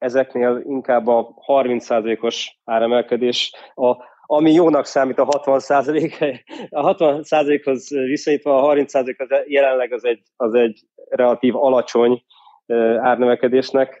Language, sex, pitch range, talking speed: Hungarian, male, 120-145 Hz, 105 wpm